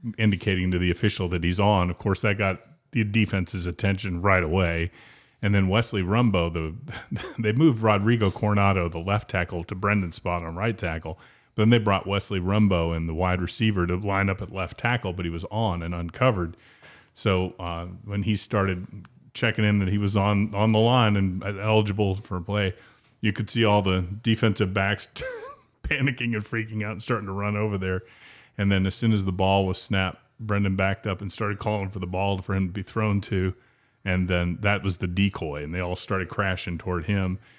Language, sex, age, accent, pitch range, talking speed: English, male, 30-49, American, 90-105 Hz, 200 wpm